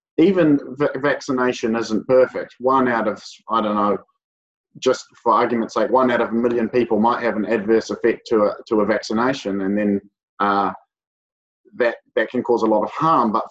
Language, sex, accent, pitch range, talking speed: English, male, Australian, 110-135 Hz, 190 wpm